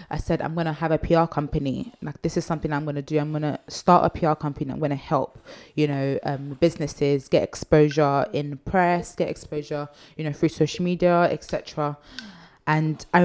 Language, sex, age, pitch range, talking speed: English, female, 20-39, 155-195 Hz, 215 wpm